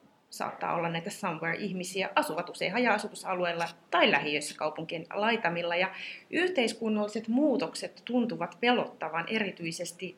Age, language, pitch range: 30-49, Finnish, 180-240 Hz